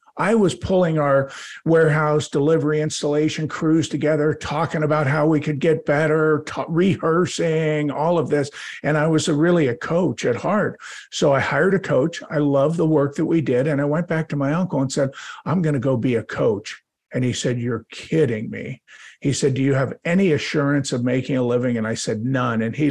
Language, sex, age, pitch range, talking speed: English, male, 50-69, 135-165 Hz, 205 wpm